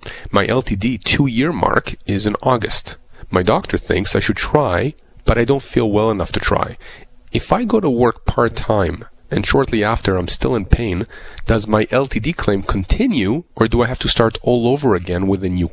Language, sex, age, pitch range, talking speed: English, male, 40-59, 100-120 Hz, 195 wpm